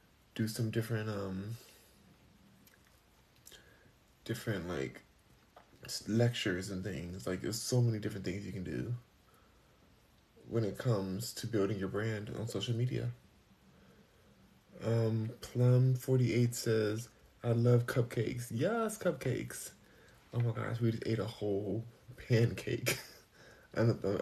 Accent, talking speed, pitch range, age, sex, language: American, 115 wpm, 100-120 Hz, 20-39, male, English